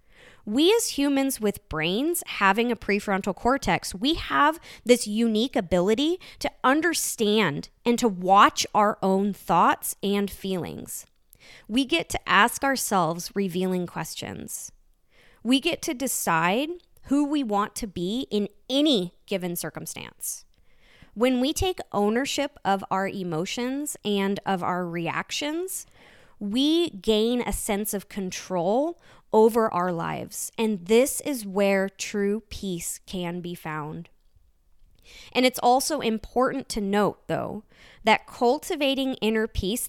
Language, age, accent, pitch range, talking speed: English, 20-39, American, 195-270 Hz, 125 wpm